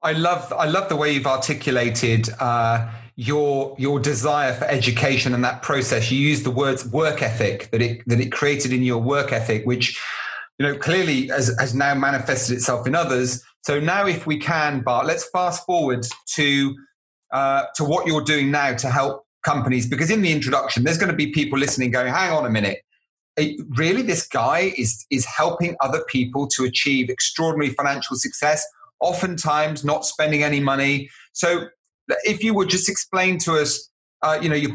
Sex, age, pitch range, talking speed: male, 30-49, 130-160 Hz, 185 wpm